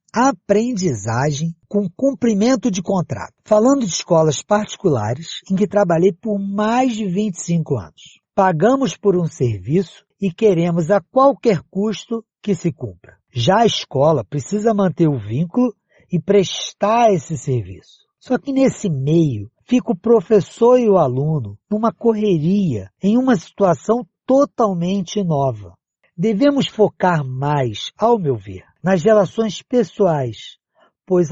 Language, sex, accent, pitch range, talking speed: Portuguese, male, Brazilian, 155-215 Hz, 130 wpm